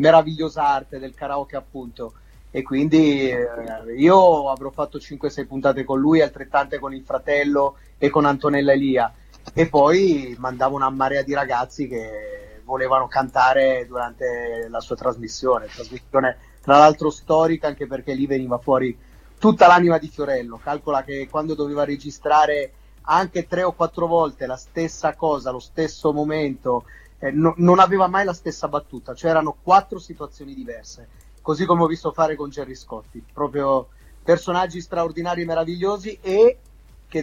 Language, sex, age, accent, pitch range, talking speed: Italian, male, 30-49, native, 130-160 Hz, 150 wpm